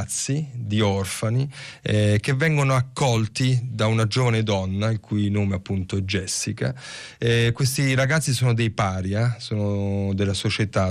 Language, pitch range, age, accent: Italian, 100-120 Hz, 30-49, native